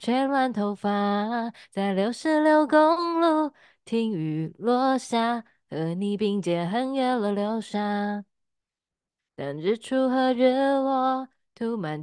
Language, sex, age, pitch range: Chinese, female, 20-39, 225-310 Hz